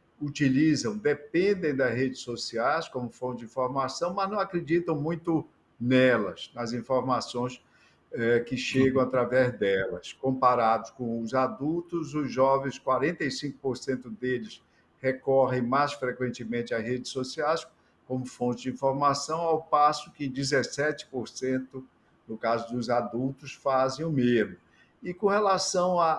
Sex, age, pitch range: male, 50-69, 125-170 Hz